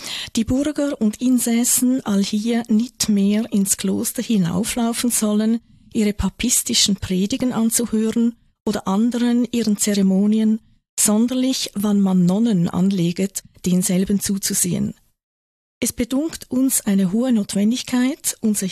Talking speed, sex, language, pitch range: 110 wpm, female, German, 190-230 Hz